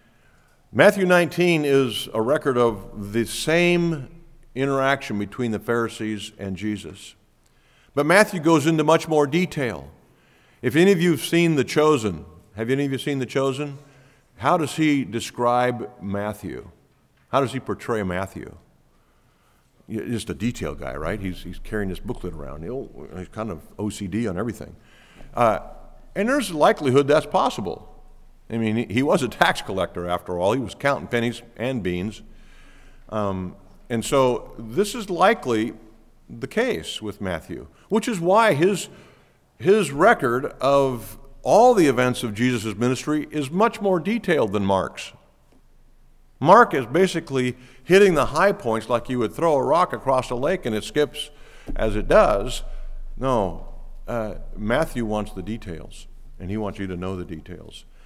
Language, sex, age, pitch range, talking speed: English, male, 50-69, 105-155 Hz, 155 wpm